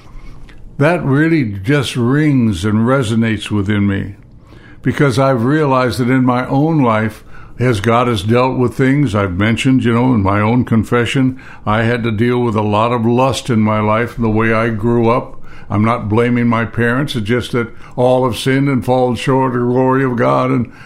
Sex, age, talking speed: male, 60-79, 195 wpm